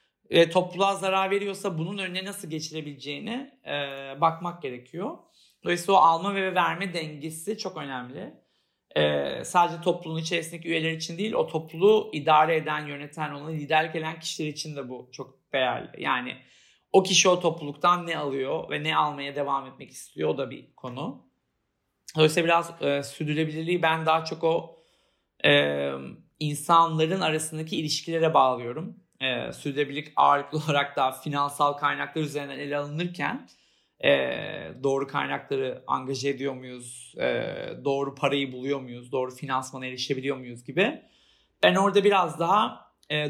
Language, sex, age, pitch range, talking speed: Turkish, male, 40-59, 140-175 Hz, 140 wpm